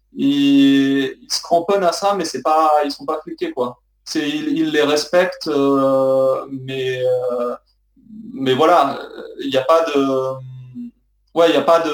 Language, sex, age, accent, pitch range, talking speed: French, male, 20-39, French, 135-170 Hz, 160 wpm